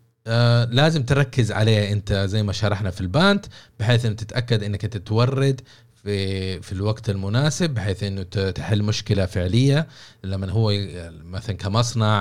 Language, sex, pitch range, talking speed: Arabic, male, 95-120 Hz, 140 wpm